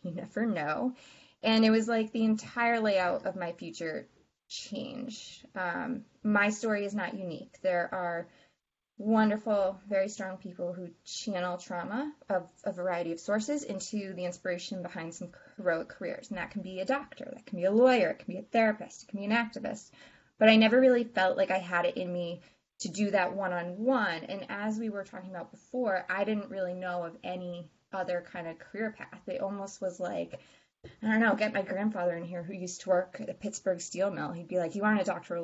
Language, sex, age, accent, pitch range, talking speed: English, female, 20-39, American, 180-225 Hz, 210 wpm